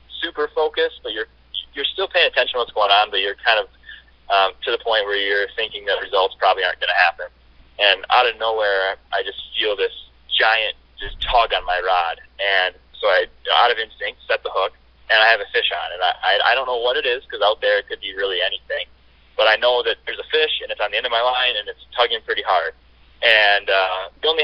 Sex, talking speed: male, 245 wpm